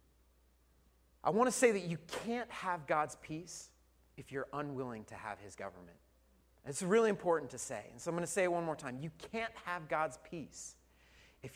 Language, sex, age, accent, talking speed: English, male, 30-49, American, 195 wpm